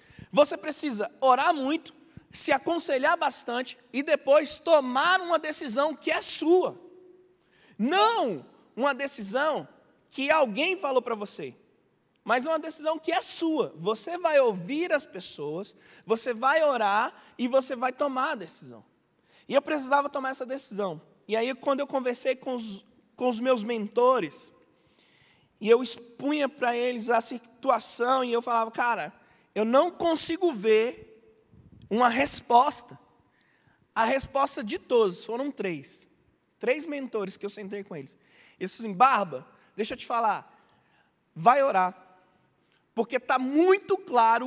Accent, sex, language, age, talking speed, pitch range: Brazilian, male, Portuguese, 20-39, 140 wpm, 225-290 Hz